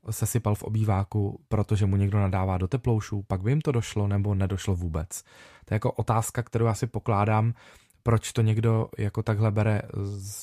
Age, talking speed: 20-39, 185 wpm